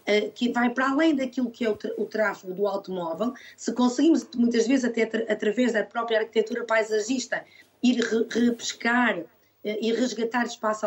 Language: Portuguese